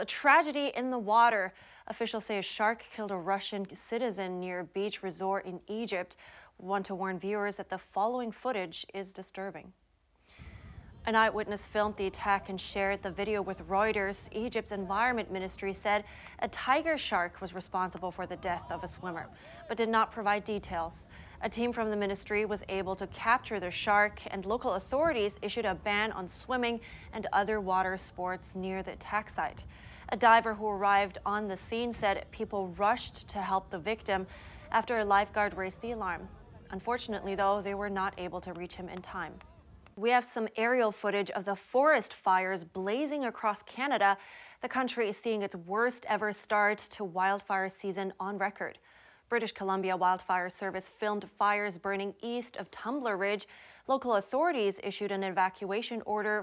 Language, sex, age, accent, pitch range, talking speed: English, female, 20-39, American, 190-220 Hz, 170 wpm